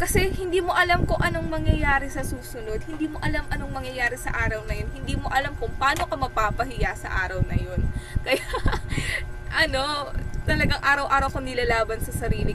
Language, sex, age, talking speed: English, female, 20-39, 175 wpm